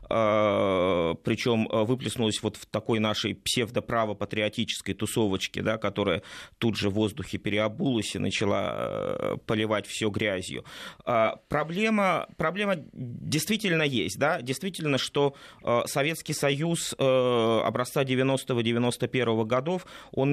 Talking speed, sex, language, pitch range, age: 95 wpm, male, Russian, 115-155 Hz, 20-39